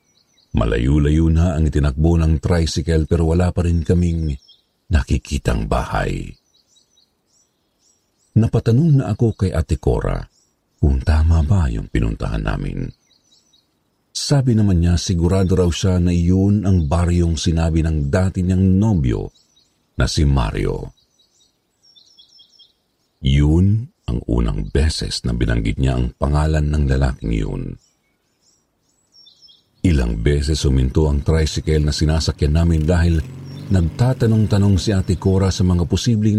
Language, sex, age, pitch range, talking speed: Filipino, male, 50-69, 75-100 Hz, 115 wpm